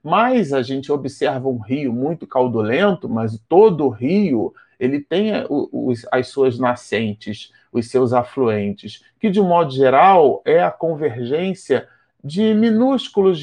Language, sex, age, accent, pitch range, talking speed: Portuguese, male, 40-59, Brazilian, 120-150 Hz, 145 wpm